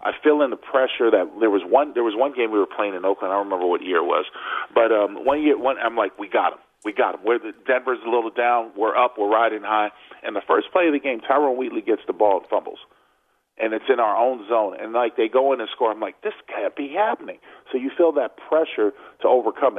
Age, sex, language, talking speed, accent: 40-59, male, English, 265 wpm, American